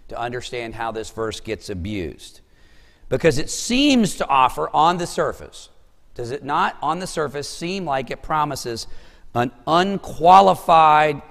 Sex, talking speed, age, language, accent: male, 145 wpm, 50-69, English, American